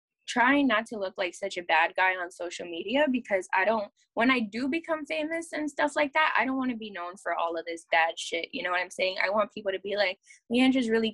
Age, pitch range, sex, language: 10-29, 180-255 Hz, female, English